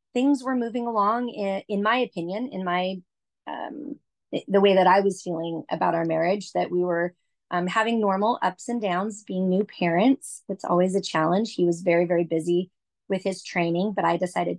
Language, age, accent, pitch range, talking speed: English, 30-49, American, 170-205 Hz, 195 wpm